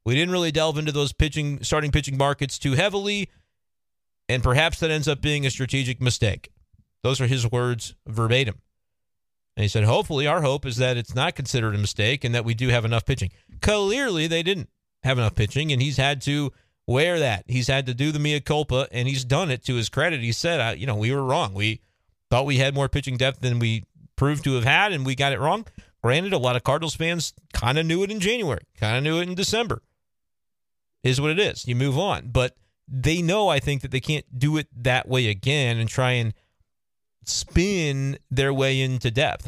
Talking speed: 215 wpm